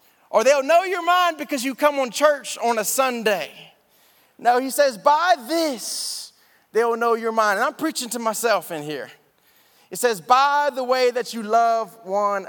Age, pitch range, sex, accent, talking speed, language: 30-49, 205-265 Hz, male, American, 185 wpm, English